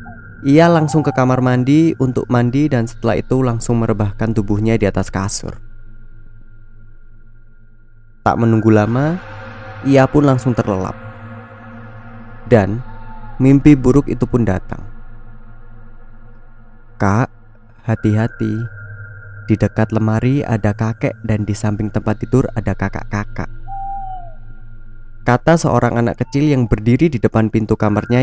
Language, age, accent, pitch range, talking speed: Indonesian, 20-39, native, 110-125 Hz, 115 wpm